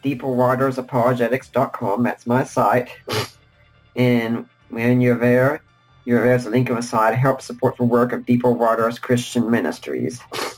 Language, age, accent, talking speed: English, 40-59, American, 145 wpm